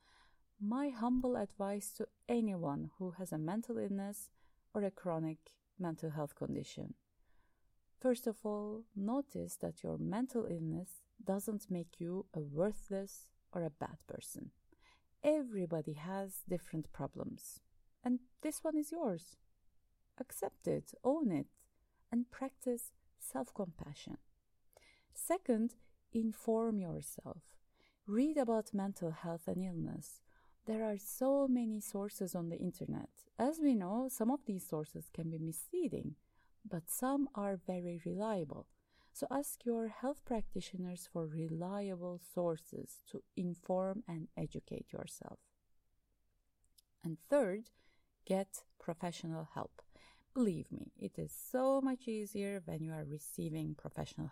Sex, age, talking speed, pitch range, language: female, 30-49, 125 wpm, 170-235 Hz, English